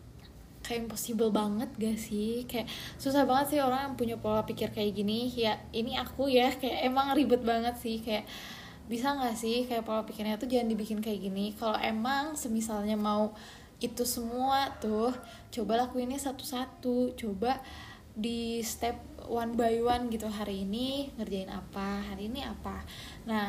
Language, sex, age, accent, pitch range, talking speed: Indonesian, female, 10-29, native, 215-265 Hz, 160 wpm